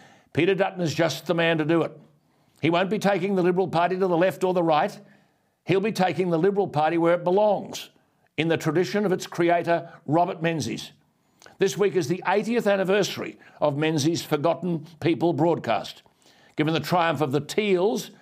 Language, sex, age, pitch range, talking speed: English, male, 60-79, 150-185 Hz, 185 wpm